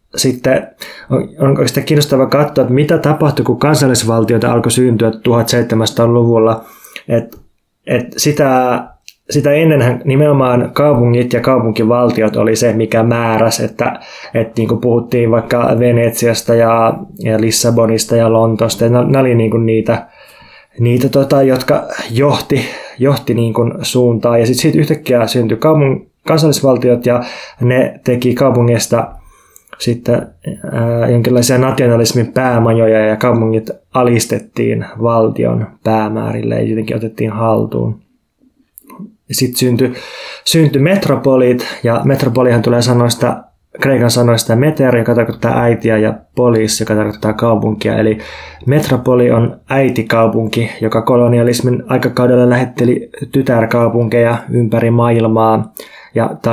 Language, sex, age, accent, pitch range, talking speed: Finnish, male, 20-39, native, 115-130 Hz, 105 wpm